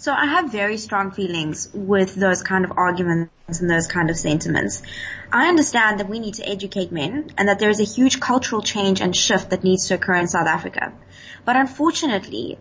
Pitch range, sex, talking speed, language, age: 185-235 Hz, female, 205 wpm, English, 20-39